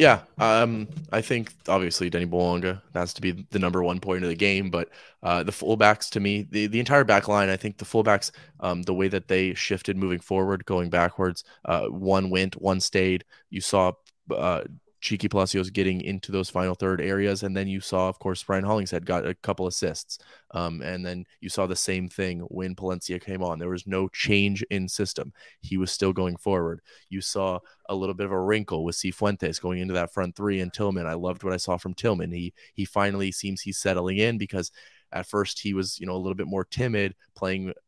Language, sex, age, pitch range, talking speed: English, male, 20-39, 90-100 Hz, 220 wpm